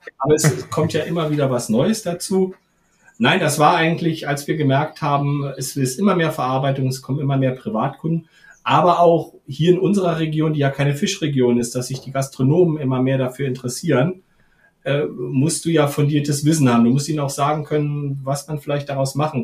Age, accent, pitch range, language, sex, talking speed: 40-59, German, 130-155 Hz, German, male, 200 wpm